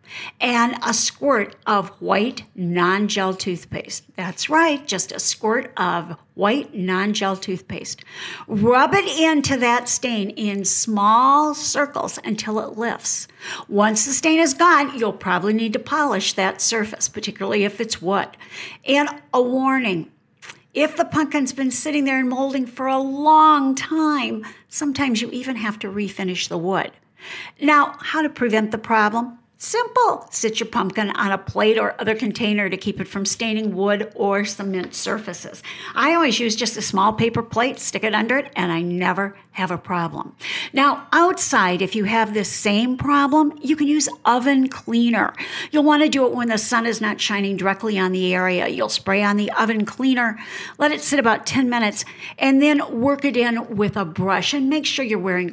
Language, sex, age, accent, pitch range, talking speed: English, female, 50-69, American, 200-275 Hz, 175 wpm